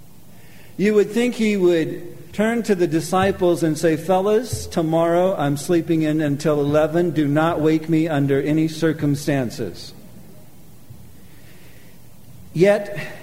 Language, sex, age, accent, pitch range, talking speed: English, male, 50-69, American, 140-175 Hz, 120 wpm